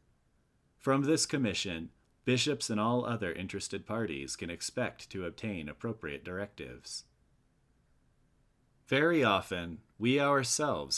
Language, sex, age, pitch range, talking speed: English, male, 30-49, 95-125 Hz, 105 wpm